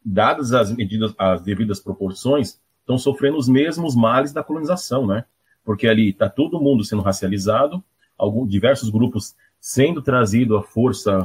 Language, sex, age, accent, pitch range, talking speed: Portuguese, male, 30-49, Brazilian, 105-145 Hz, 150 wpm